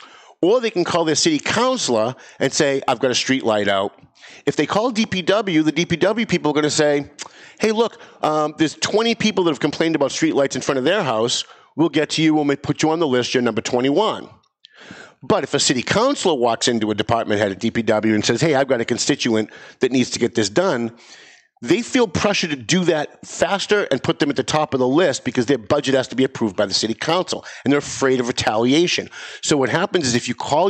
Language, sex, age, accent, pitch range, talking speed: English, male, 50-69, American, 130-180 Hz, 240 wpm